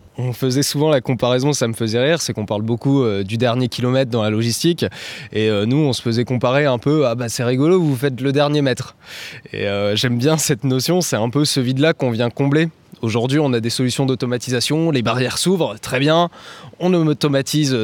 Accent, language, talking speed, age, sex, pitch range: French, French, 225 wpm, 20-39, male, 115-135 Hz